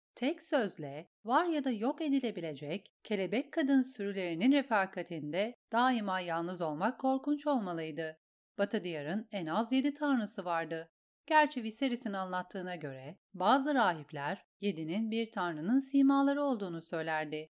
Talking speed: 120 wpm